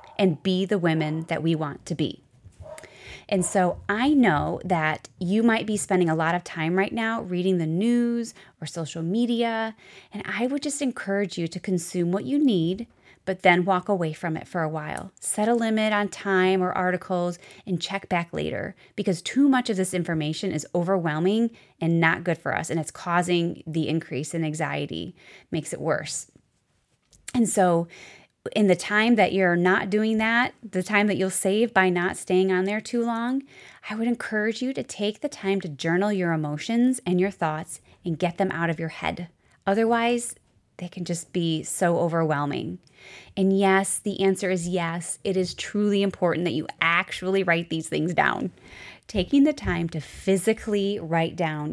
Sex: female